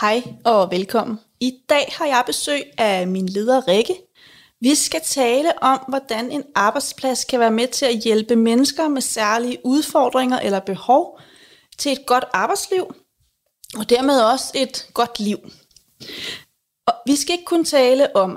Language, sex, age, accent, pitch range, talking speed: Danish, female, 30-49, native, 225-280 Hz, 155 wpm